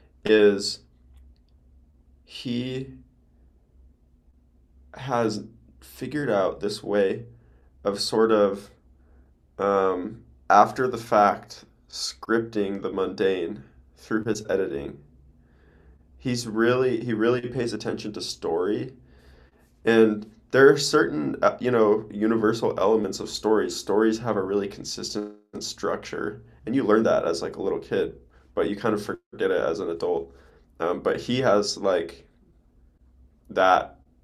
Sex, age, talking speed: male, 20-39, 120 wpm